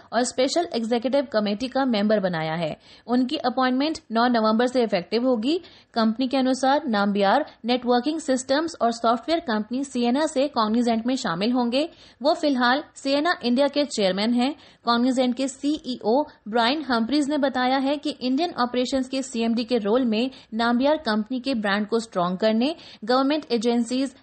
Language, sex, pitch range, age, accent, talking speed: Hindi, female, 225-275 Hz, 20-39, native, 155 wpm